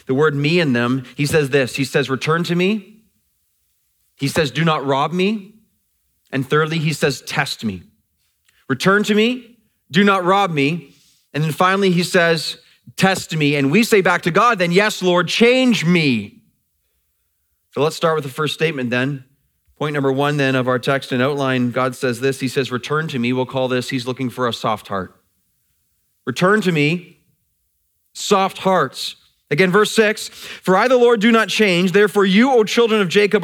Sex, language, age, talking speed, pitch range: male, English, 30-49, 190 wpm, 140-210 Hz